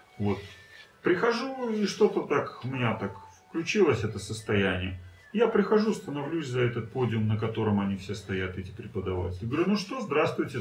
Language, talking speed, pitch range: Russian, 165 wpm, 100-140 Hz